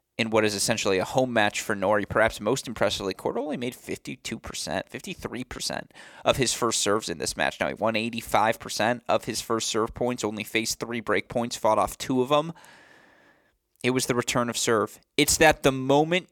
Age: 20-39